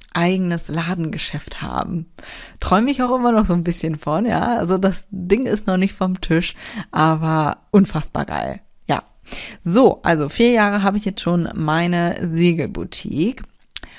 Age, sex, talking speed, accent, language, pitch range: 30-49, female, 150 wpm, German, German, 170-210 Hz